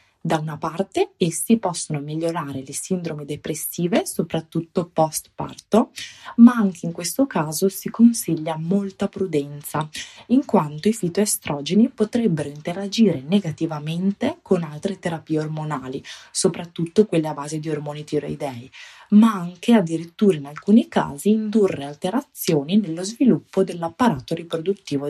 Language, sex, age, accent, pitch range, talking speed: Italian, female, 20-39, native, 155-205 Hz, 120 wpm